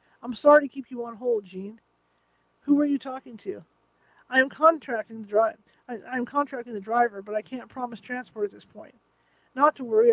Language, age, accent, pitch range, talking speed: English, 50-69, American, 215-260 Hz, 205 wpm